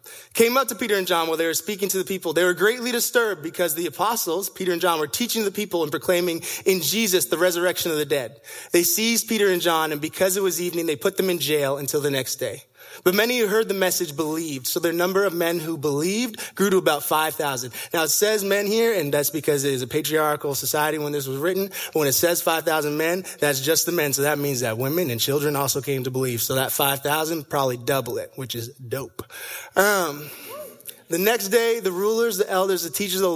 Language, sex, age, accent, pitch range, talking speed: English, male, 20-39, American, 155-210 Hz, 235 wpm